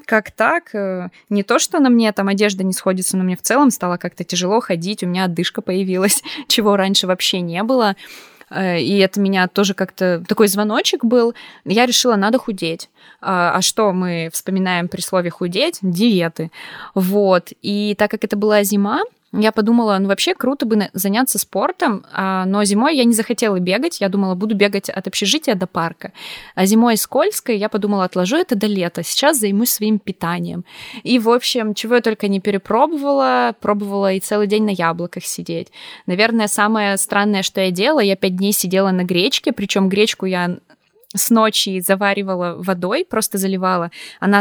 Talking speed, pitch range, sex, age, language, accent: 175 wpm, 190-220 Hz, female, 20-39, Russian, native